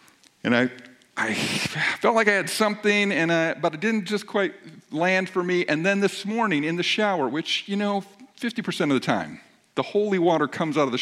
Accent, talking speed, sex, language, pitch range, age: American, 210 wpm, male, English, 155-200 Hz, 50-69